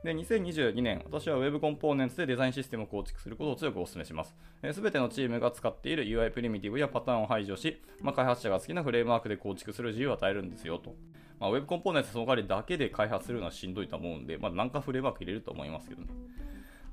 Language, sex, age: Japanese, male, 20-39